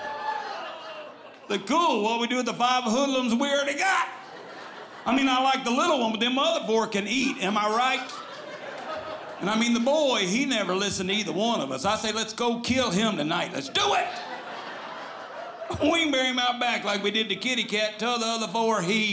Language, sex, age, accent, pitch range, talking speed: English, male, 50-69, American, 215-280 Hz, 215 wpm